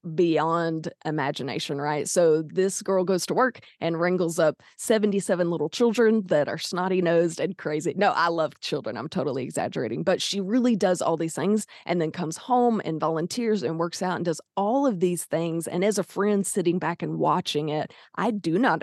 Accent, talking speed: American, 195 wpm